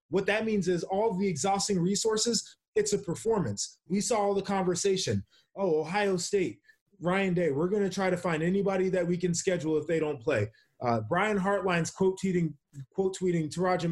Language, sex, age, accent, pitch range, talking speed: English, male, 20-39, American, 140-195 Hz, 180 wpm